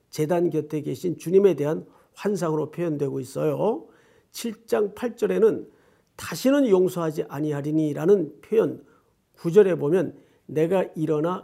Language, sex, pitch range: Korean, male, 155-225 Hz